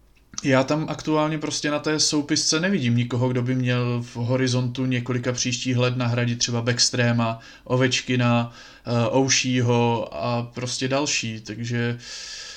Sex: male